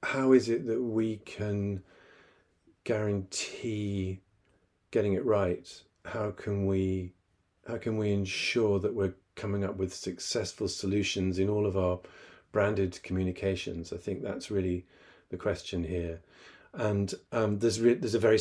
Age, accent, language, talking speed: 50-69, British, English, 140 wpm